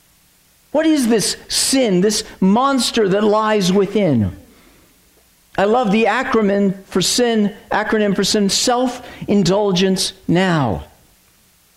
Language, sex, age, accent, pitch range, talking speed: English, male, 50-69, American, 180-240 Hz, 90 wpm